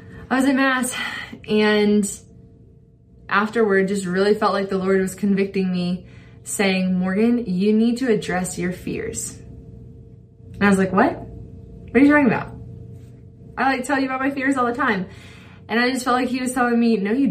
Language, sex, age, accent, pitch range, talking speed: English, female, 20-39, American, 195-225 Hz, 185 wpm